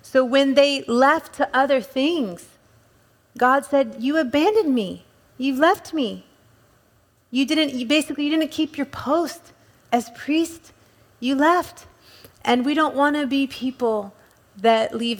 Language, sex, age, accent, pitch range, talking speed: English, female, 30-49, American, 245-280 Hz, 145 wpm